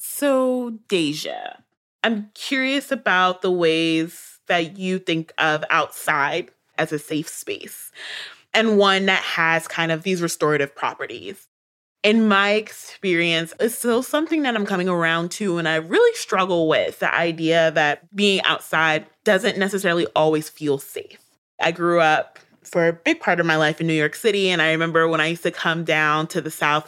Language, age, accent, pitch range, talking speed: English, 30-49, American, 155-195 Hz, 170 wpm